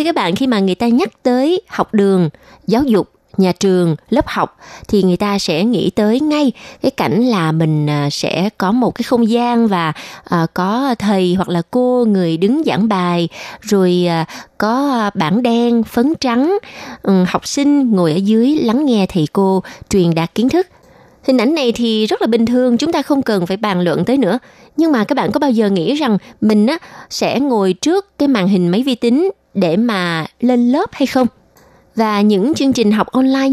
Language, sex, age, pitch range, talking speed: Vietnamese, female, 20-39, 185-260 Hz, 195 wpm